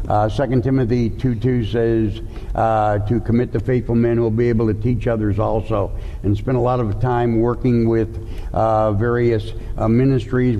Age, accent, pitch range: 60-79, American, 110-135 Hz